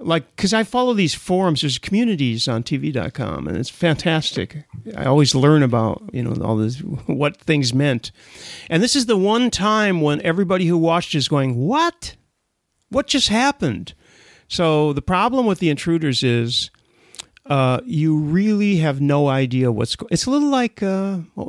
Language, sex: English, male